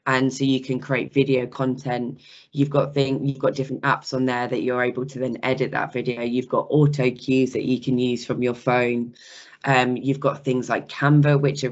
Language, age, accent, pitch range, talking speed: English, 10-29, British, 125-140 Hz, 220 wpm